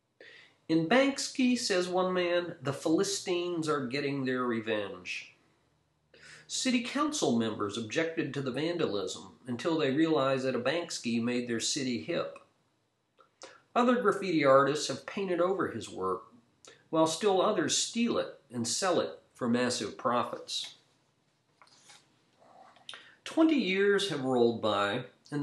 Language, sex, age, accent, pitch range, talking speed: English, male, 40-59, American, 130-175 Hz, 125 wpm